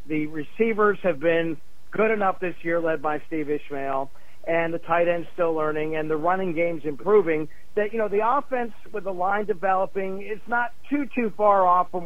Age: 50-69